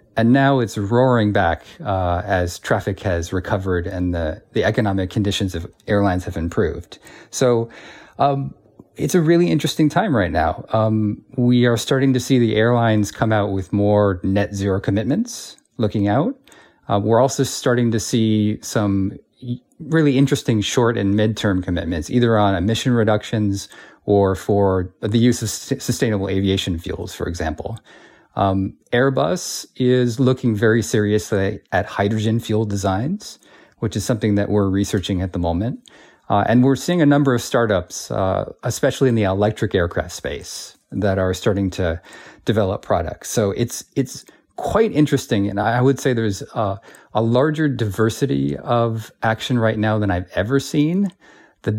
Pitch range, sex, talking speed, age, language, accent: 100-125 Hz, male, 155 wpm, 40-59, English, American